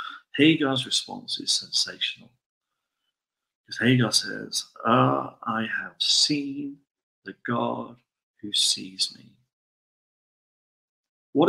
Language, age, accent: English, 40-59, British